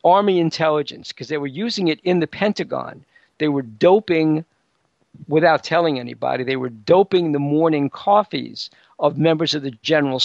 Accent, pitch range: American, 145-190 Hz